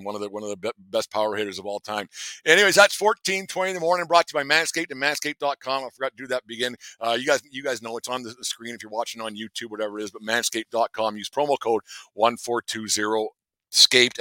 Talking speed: 235 wpm